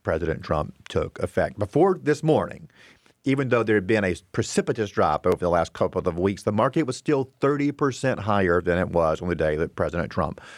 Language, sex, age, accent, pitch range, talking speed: English, male, 40-59, American, 100-145 Hz, 210 wpm